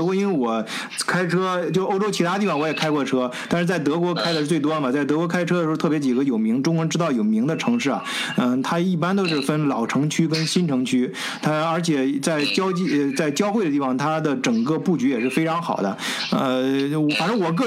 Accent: native